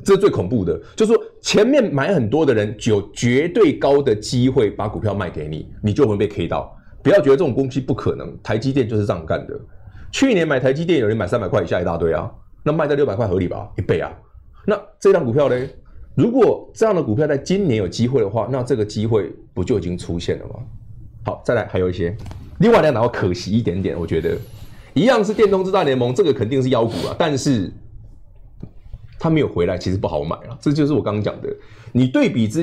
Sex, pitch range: male, 100-135 Hz